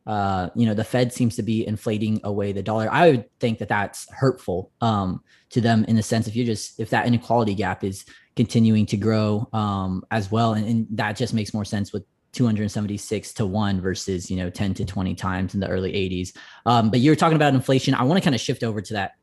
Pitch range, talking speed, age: 105-130 Hz, 235 wpm, 20-39